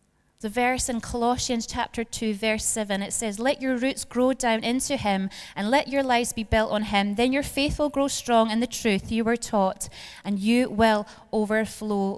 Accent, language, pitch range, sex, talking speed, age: British, English, 210-245 Hz, female, 200 wpm, 20-39